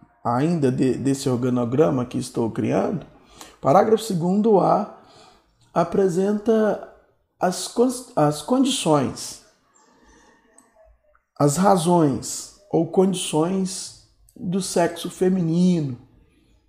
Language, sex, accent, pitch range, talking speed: Portuguese, male, Brazilian, 135-185 Hz, 70 wpm